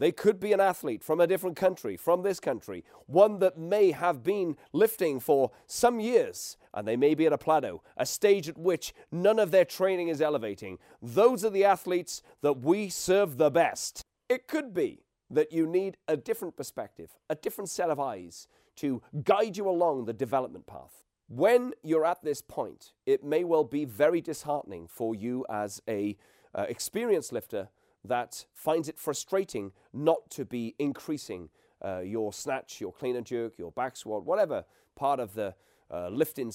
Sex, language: male, English